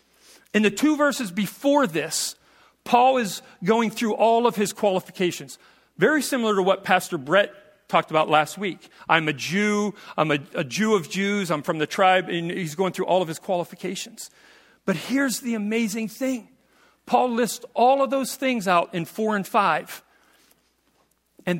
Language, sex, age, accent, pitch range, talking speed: English, male, 40-59, American, 160-220 Hz, 170 wpm